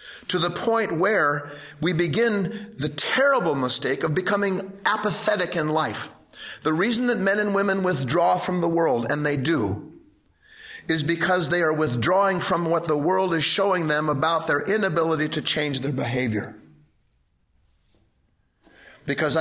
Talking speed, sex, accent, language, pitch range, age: 145 wpm, male, American, English, 145-190 Hz, 50-69